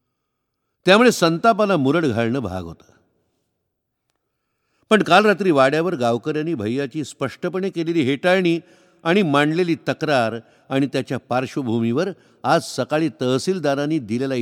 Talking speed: 105 wpm